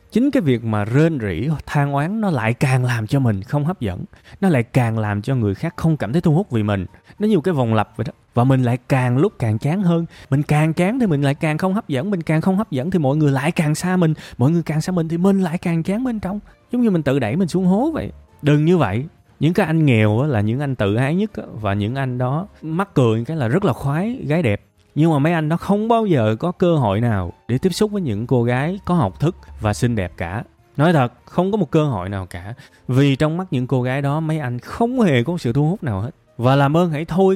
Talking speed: 280 wpm